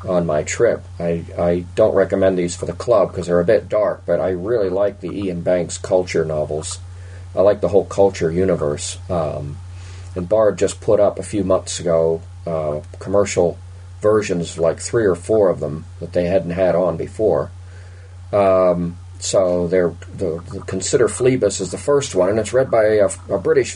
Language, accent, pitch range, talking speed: English, American, 90-100 Hz, 185 wpm